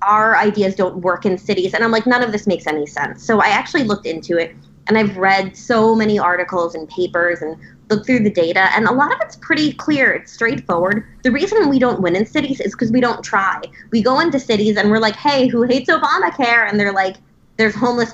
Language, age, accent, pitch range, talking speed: English, 20-39, American, 180-240 Hz, 235 wpm